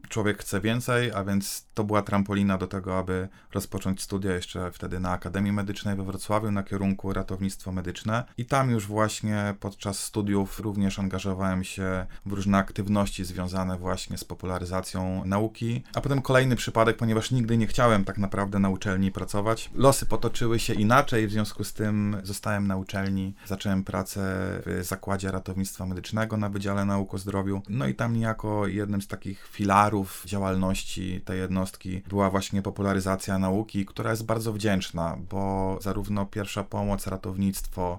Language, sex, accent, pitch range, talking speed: Polish, male, native, 95-110 Hz, 160 wpm